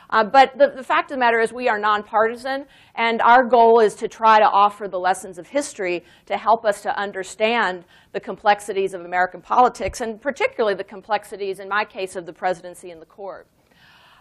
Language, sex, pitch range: English, female, 190-245 Hz